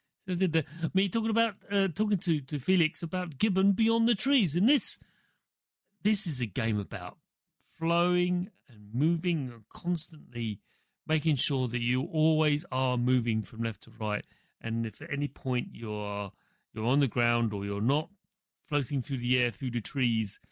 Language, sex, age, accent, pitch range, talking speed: English, male, 40-59, British, 115-180 Hz, 170 wpm